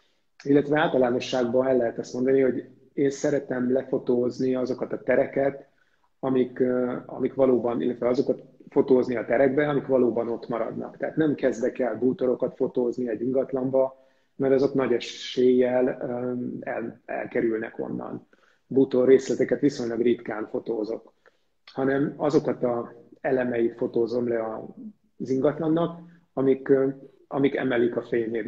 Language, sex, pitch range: Hungarian, male, 125-135 Hz